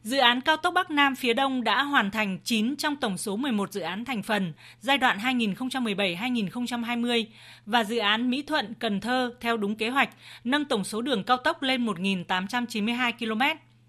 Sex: female